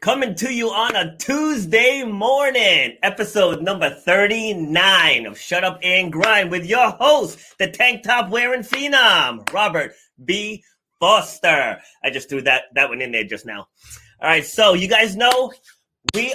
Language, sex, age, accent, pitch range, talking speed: English, male, 30-49, American, 150-205 Hz, 160 wpm